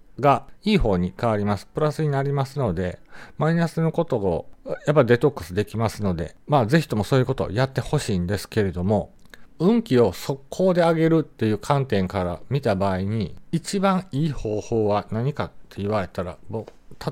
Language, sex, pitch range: Japanese, male, 100-160 Hz